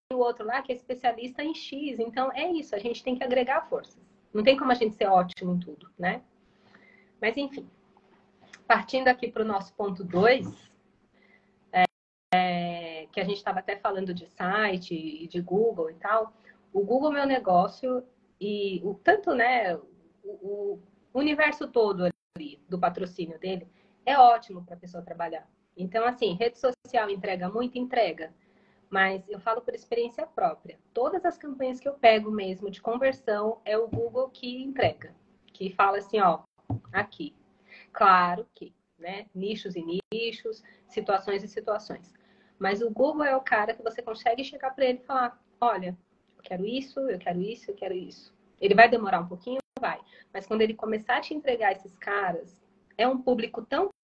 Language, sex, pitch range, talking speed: Portuguese, female, 195-255 Hz, 175 wpm